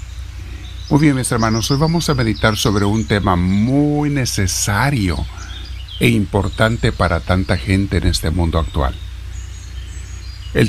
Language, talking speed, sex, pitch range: Spanish, 130 wpm, male, 90-115 Hz